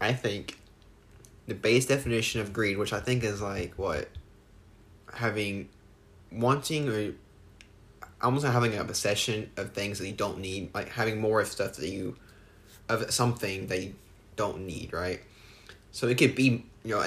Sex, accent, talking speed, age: male, American, 160 wpm, 10-29